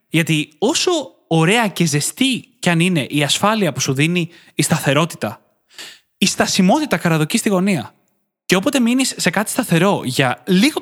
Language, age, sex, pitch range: Greek, 20-39, male, 145-185 Hz